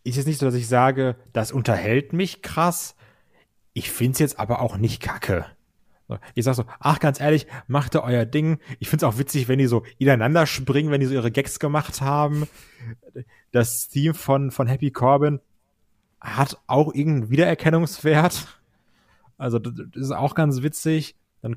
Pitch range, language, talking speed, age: 115-140 Hz, German, 175 wpm, 30-49